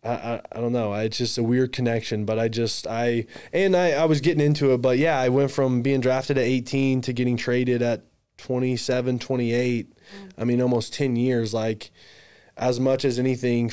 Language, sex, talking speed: English, male, 205 wpm